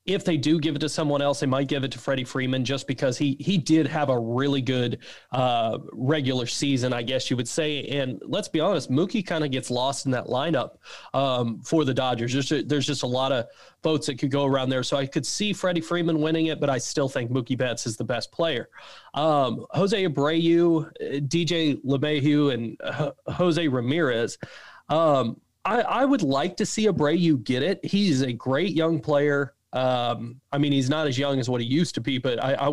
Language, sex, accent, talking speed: English, male, American, 220 wpm